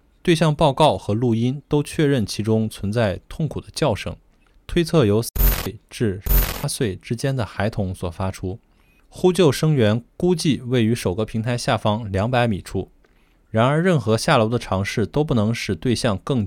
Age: 20-39